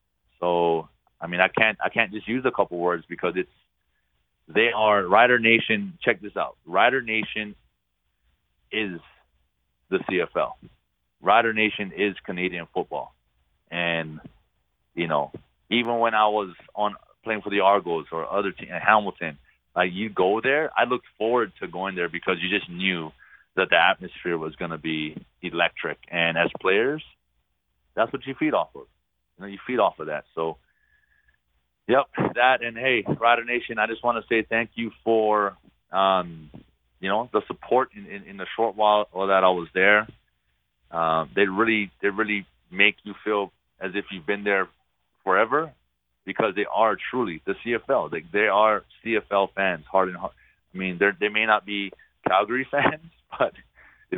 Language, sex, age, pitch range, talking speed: English, male, 30-49, 80-110 Hz, 165 wpm